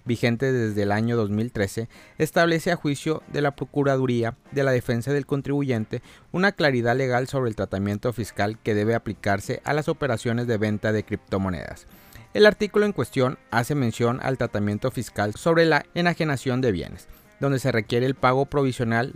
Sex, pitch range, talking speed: male, 105-135 Hz, 165 wpm